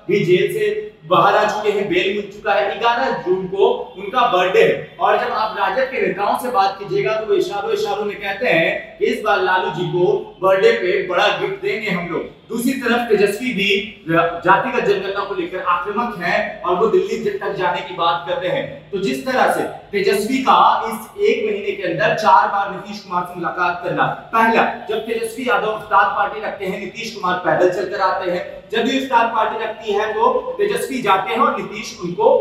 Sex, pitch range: male, 195-260 Hz